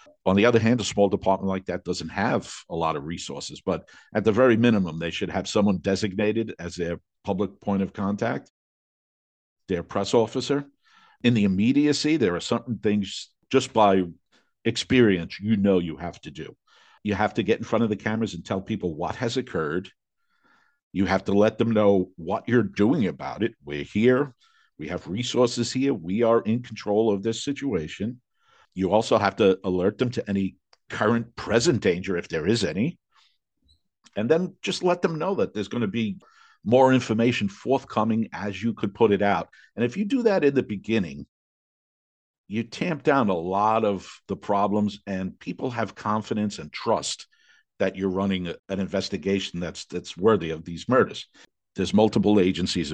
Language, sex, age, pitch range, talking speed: English, male, 50-69, 95-115 Hz, 180 wpm